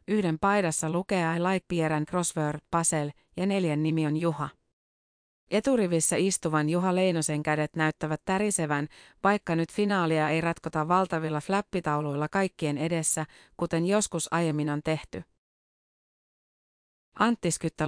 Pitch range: 155-185 Hz